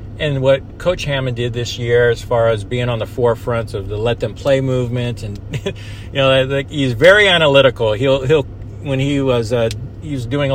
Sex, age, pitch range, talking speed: male, 50-69, 110-140 Hz, 200 wpm